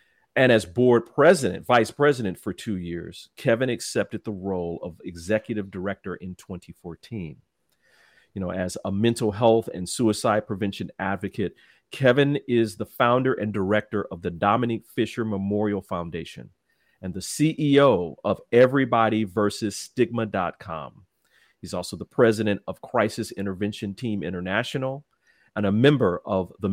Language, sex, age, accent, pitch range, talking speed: English, male, 40-59, American, 100-130 Hz, 130 wpm